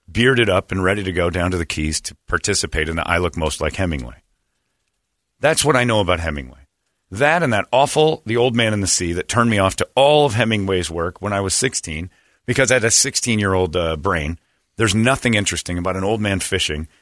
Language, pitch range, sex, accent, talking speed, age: English, 85-115 Hz, male, American, 220 wpm, 40-59